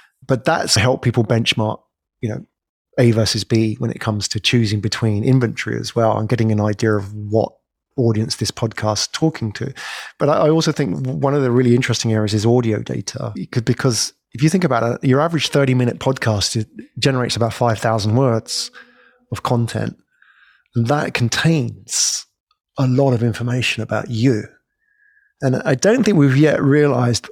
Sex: male